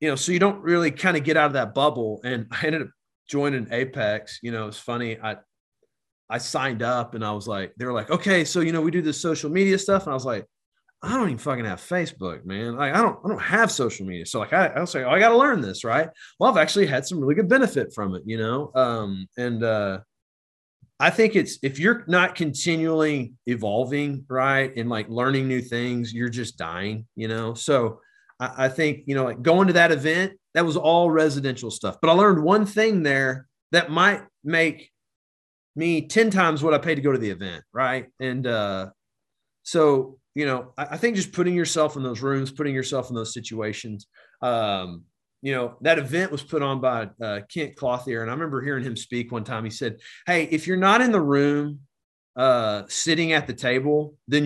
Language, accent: English, American